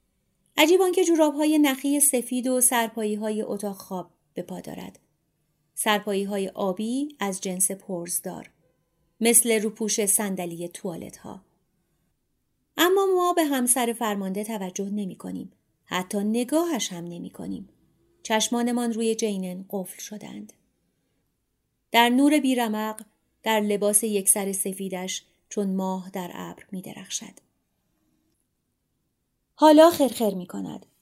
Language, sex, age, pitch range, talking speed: Persian, female, 30-49, 190-255 Hz, 115 wpm